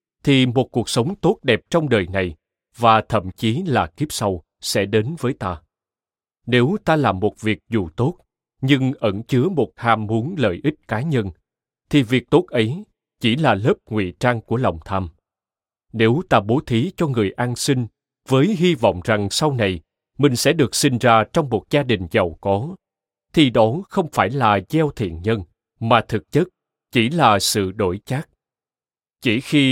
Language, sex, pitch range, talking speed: Vietnamese, male, 100-140 Hz, 185 wpm